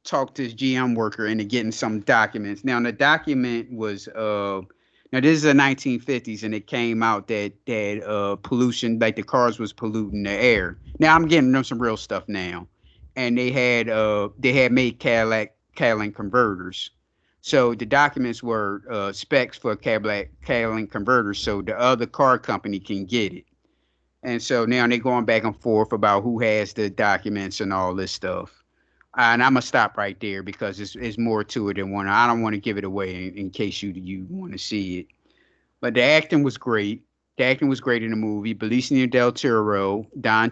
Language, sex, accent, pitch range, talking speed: English, male, American, 100-125 Hz, 195 wpm